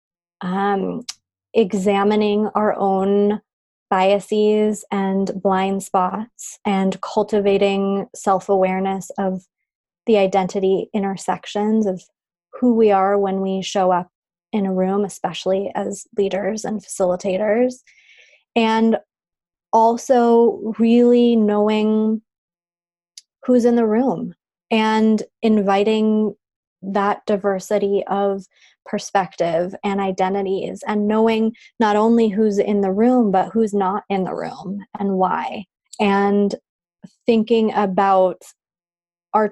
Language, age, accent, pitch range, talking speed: English, 20-39, American, 190-215 Hz, 100 wpm